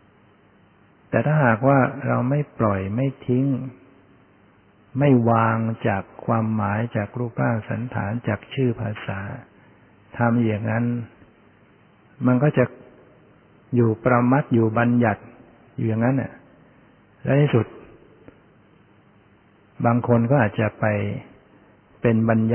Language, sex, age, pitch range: Thai, male, 60-79, 105-120 Hz